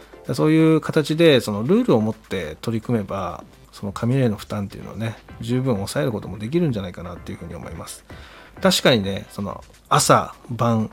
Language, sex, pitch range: Japanese, male, 100-125 Hz